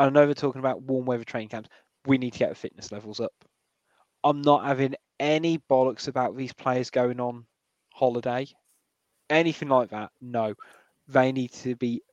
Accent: British